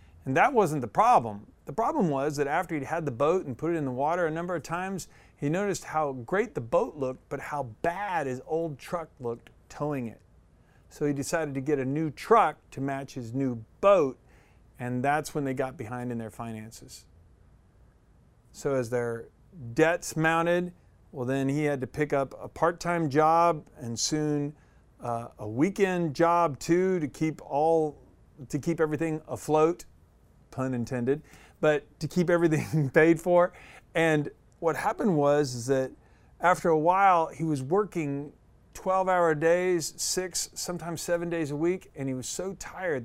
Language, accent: English, American